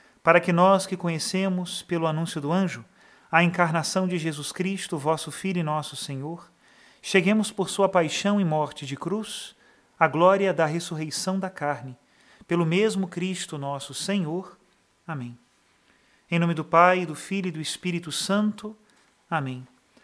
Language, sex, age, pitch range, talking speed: Portuguese, male, 40-59, 160-195 Hz, 150 wpm